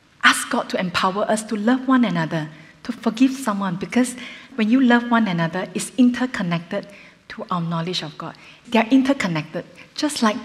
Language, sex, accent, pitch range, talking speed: English, female, Malaysian, 175-245 Hz, 165 wpm